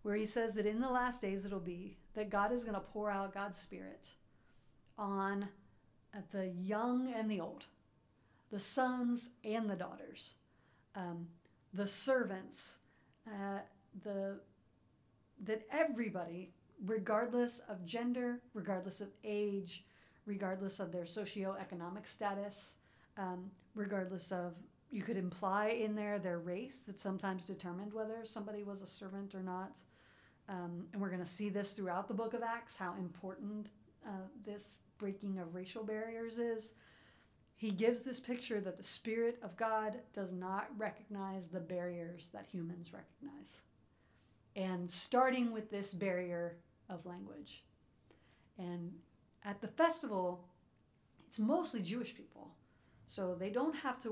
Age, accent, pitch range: 40-59, American, 180-220 Hz